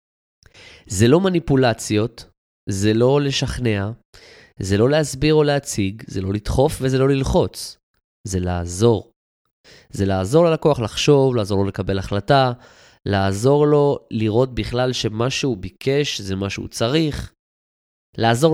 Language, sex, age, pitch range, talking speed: Hebrew, male, 20-39, 100-135 Hz, 125 wpm